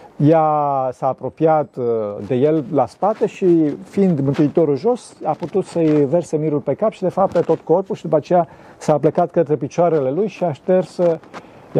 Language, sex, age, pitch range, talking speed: Romanian, male, 40-59, 125-160 Hz, 170 wpm